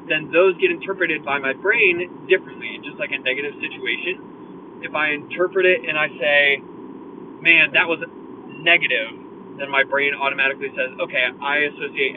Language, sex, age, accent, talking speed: English, male, 20-39, American, 160 wpm